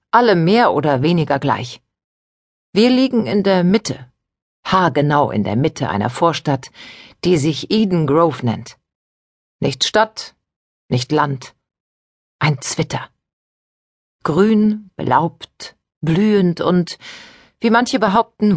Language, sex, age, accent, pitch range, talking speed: German, female, 50-69, German, 130-195 Hz, 110 wpm